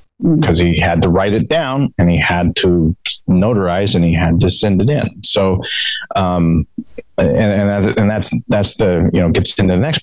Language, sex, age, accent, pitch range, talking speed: English, male, 30-49, American, 90-120 Hz, 190 wpm